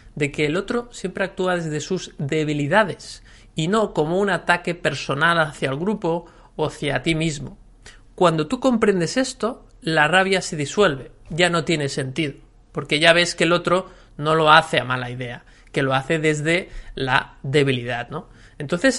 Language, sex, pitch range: Spanish, male, 135-180 Hz